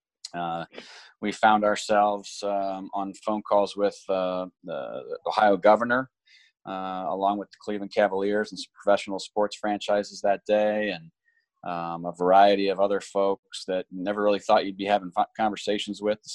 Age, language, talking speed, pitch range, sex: 30-49, English, 160 wpm, 95-105 Hz, male